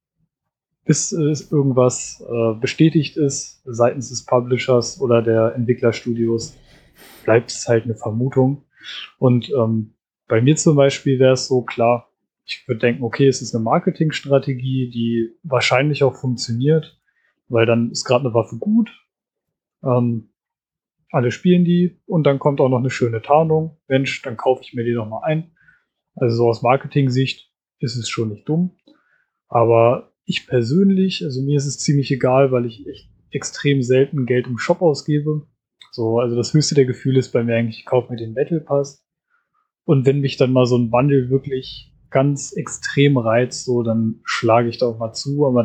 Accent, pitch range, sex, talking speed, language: German, 120-140 Hz, male, 170 wpm, German